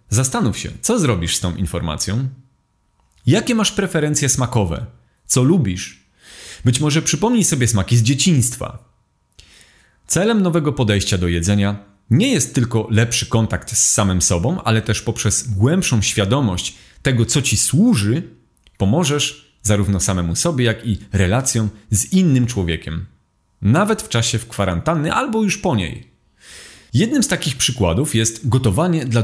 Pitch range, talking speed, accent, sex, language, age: 100-150 Hz, 140 wpm, native, male, Polish, 30-49